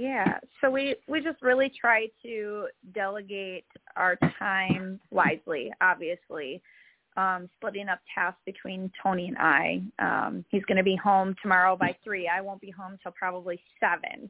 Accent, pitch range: American, 175-205 Hz